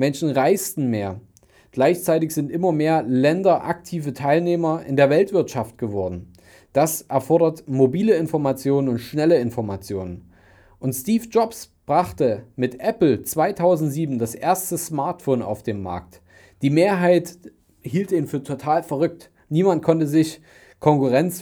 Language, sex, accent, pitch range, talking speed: German, male, German, 120-165 Hz, 125 wpm